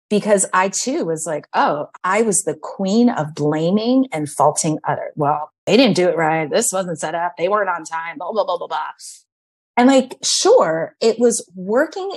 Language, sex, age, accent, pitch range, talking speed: English, female, 30-49, American, 165-225 Hz, 195 wpm